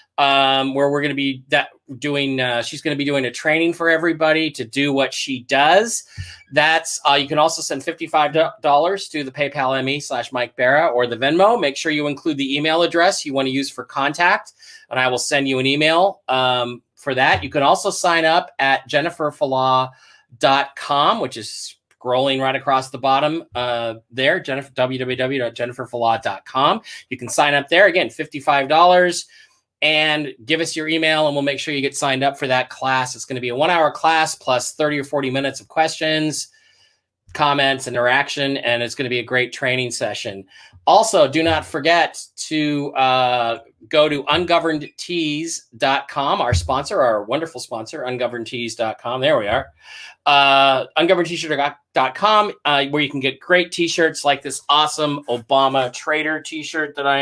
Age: 30-49